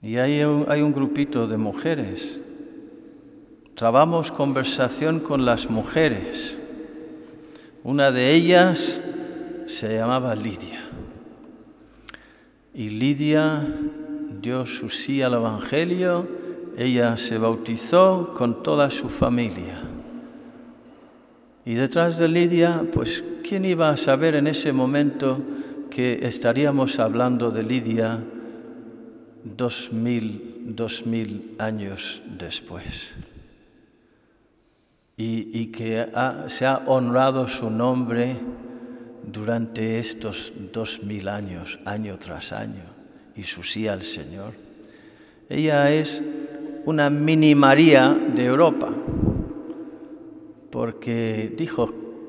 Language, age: Spanish, 50-69